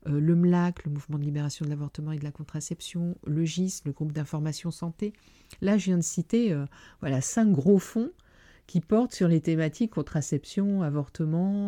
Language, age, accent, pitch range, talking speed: French, 50-69, French, 145-180 Hz, 175 wpm